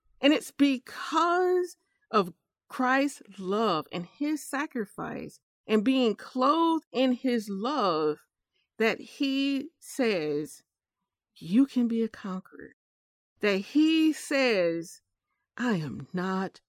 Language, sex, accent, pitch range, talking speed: English, female, American, 190-270 Hz, 105 wpm